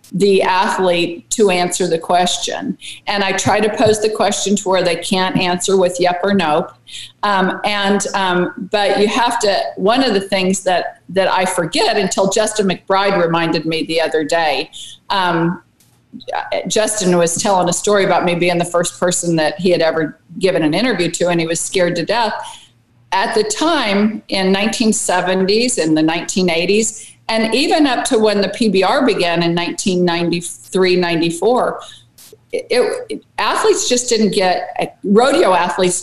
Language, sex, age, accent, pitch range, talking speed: English, female, 50-69, American, 175-215 Hz, 160 wpm